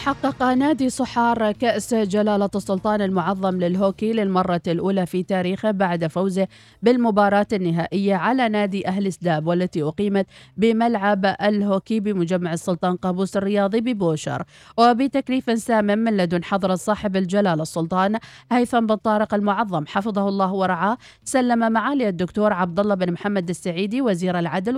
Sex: female